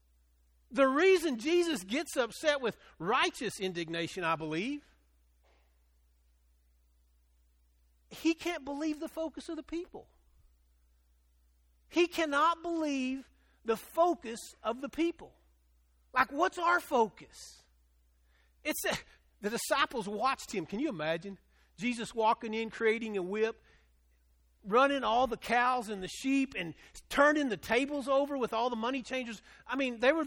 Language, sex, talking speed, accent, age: English, male, 130 wpm, American, 50-69